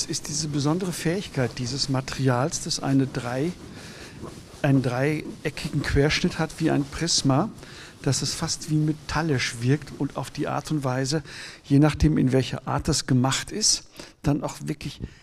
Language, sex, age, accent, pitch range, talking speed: German, male, 60-79, German, 130-155 Hz, 155 wpm